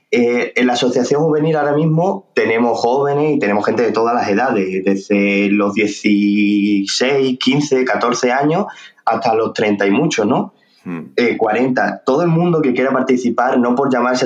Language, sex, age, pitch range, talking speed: Spanish, male, 20-39, 115-140 Hz, 165 wpm